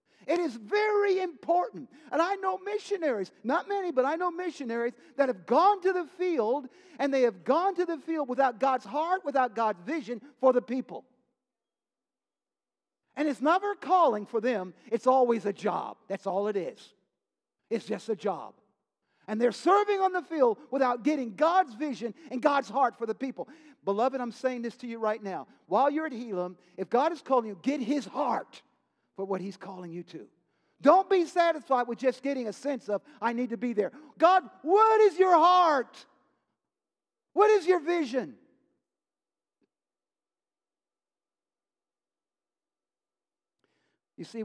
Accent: American